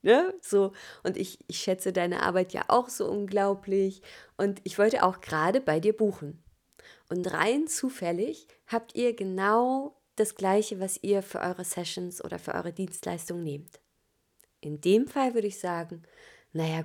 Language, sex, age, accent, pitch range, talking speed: German, female, 30-49, German, 180-210 Hz, 155 wpm